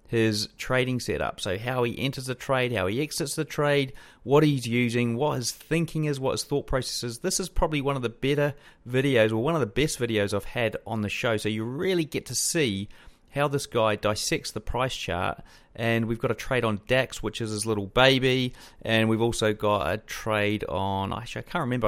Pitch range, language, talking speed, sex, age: 110-140 Hz, English, 220 wpm, male, 30-49